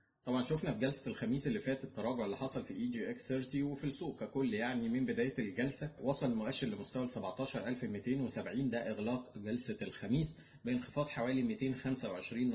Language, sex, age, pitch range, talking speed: Arabic, male, 20-39, 120-155 Hz, 160 wpm